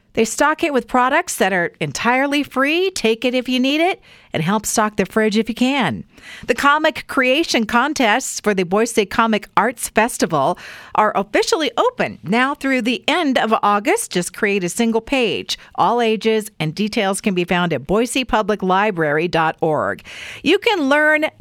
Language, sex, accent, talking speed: English, female, American, 165 wpm